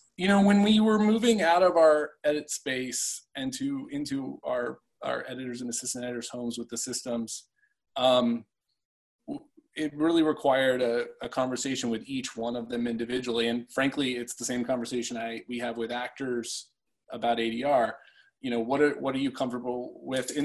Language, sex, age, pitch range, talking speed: English, male, 20-39, 120-145 Hz, 175 wpm